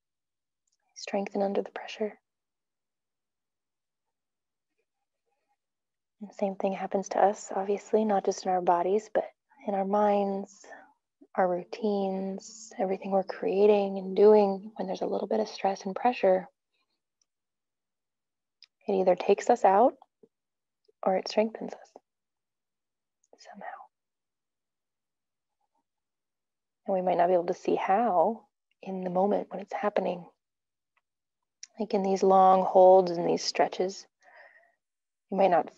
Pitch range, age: 190-215 Hz, 20-39